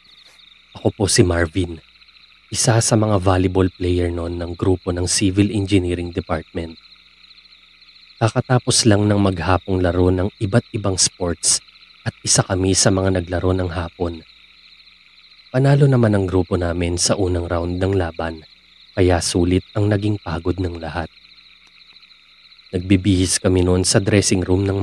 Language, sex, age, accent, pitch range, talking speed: Filipino, male, 30-49, native, 85-100 Hz, 140 wpm